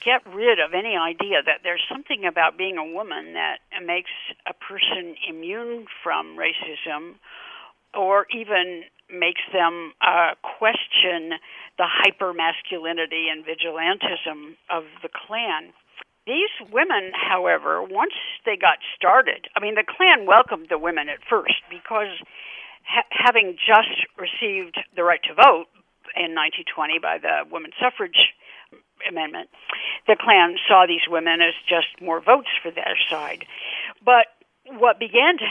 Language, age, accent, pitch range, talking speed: English, 60-79, American, 165-235 Hz, 135 wpm